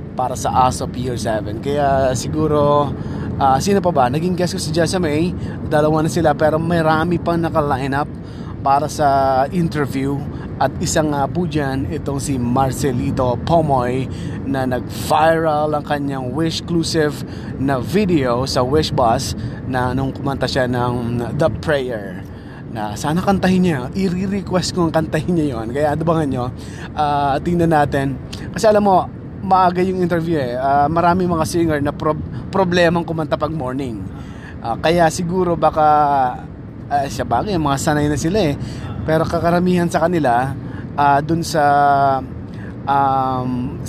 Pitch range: 125-160 Hz